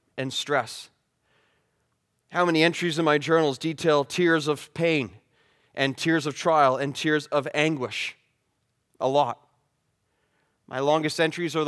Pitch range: 165-220 Hz